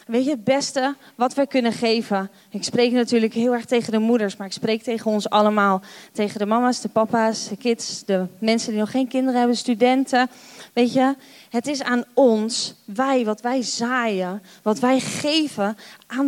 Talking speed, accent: 190 wpm, Dutch